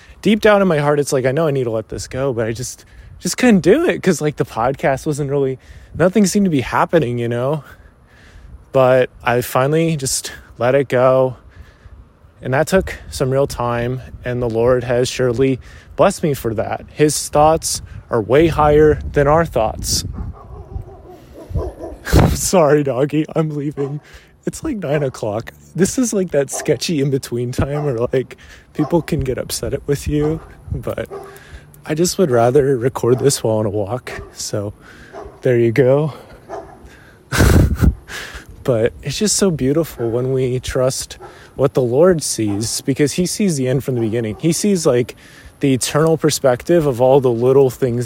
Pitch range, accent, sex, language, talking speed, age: 115-150 Hz, American, male, English, 165 wpm, 20-39